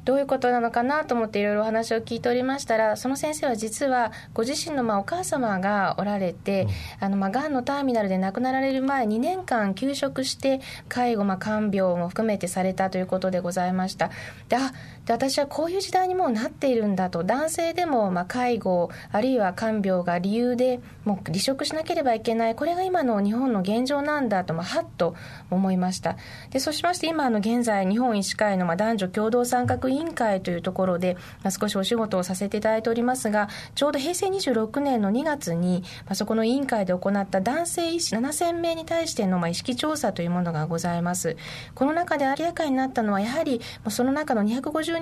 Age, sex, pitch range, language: 20-39, female, 190-270 Hz, Japanese